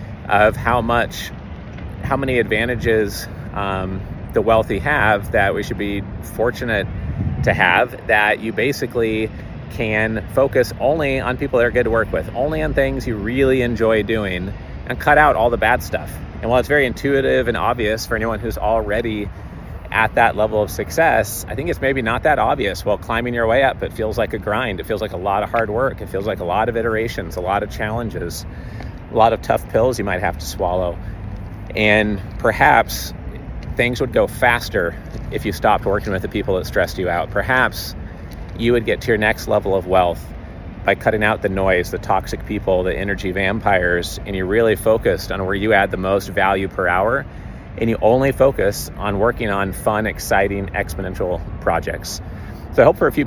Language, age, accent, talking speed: English, 30-49, American, 200 wpm